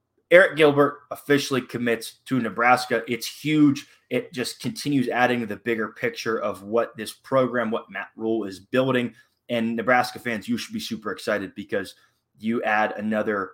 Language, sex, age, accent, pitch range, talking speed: English, male, 20-39, American, 105-125 Hz, 160 wpm